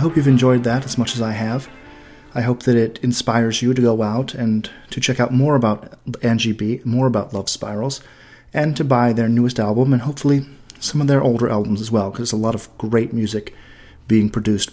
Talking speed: 225 wpm